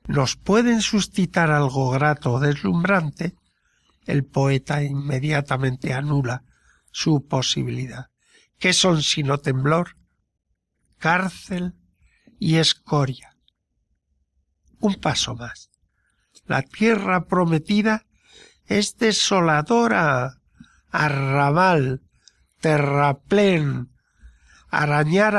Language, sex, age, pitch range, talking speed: Spanish, male, 60-79, 130-185 Hz, 75 wpm